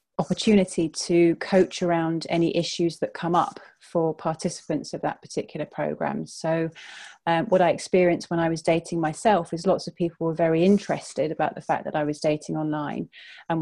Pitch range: 165-180 Hz